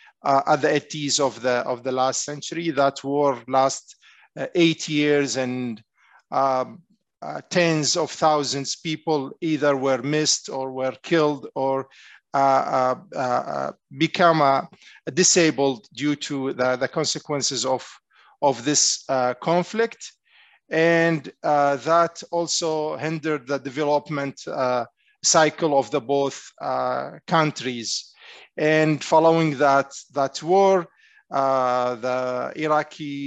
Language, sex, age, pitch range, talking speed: English, male, 50-69, 135-160 Hz, 125 wpm